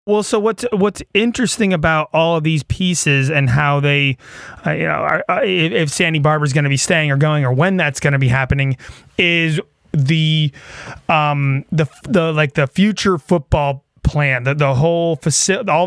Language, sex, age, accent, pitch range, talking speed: English, male, 30-49, American, 145-180 Hz, 195 wpm